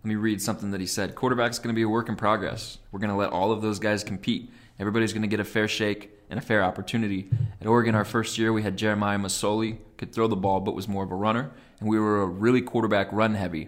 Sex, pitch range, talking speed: male, 100-110 Hz, 270 wpm